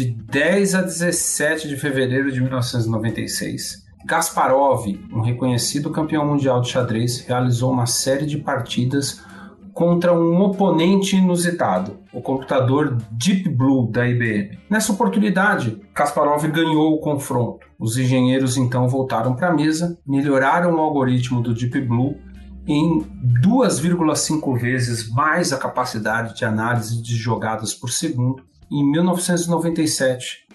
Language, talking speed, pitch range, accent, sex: Portuguese, 125 wpm, 125-165 Hz, Brazilian, male